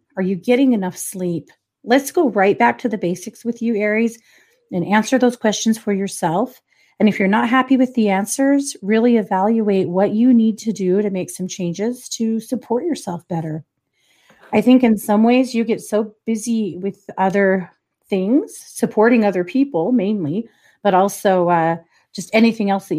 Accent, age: American, 30-49